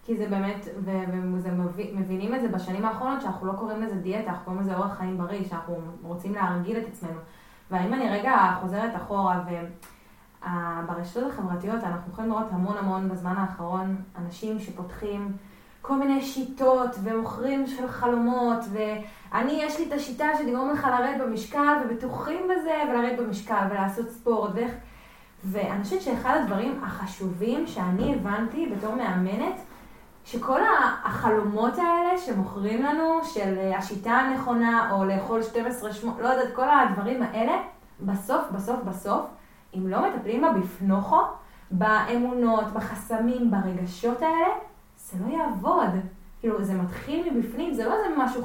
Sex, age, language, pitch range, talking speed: female, 20-39, Hebrew, 190-245 Hz, 135 wpm